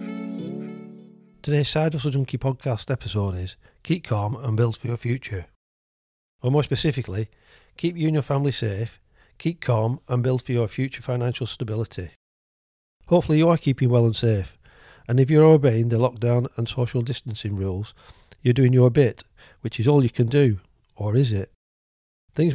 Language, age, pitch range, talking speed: English, 40-59, 110-140 Hz, 170 wpm